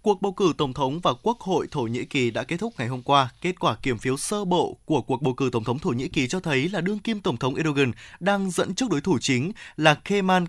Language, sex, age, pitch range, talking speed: Vietnamese, male, 20-39, 140-195 Hz, 275 wpm